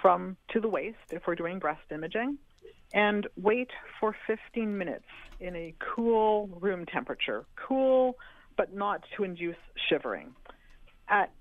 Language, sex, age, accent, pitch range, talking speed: English, female, 50-69, American, 165-220 Hz, 135 wpm